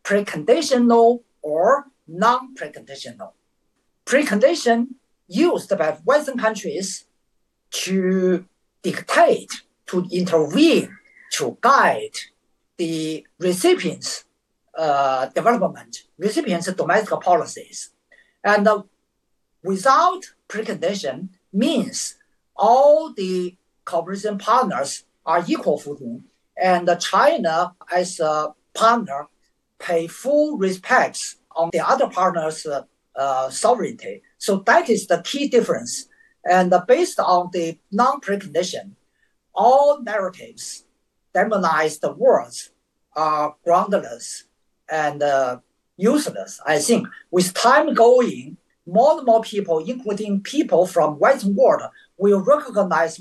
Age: 50-69